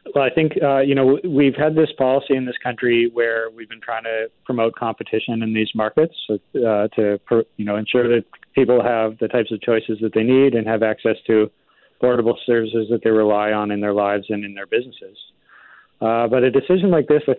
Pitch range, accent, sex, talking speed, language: 105-125 Hz, American, male, 215 wpm, English